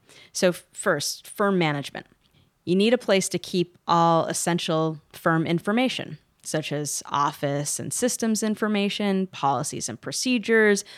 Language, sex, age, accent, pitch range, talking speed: English, female, 30-49, American, 155-200 Hz, 125 wpm